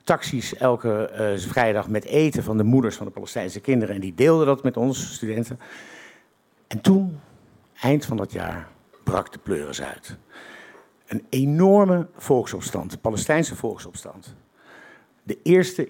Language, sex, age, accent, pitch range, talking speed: Dutch, male, 50-69, Dutch, 110-145 Hz, 140 wpm